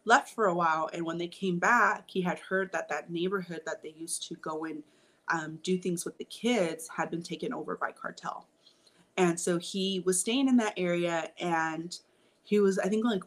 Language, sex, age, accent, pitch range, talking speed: English, female, 30-49, American, 180-240 Hz, 215 wpm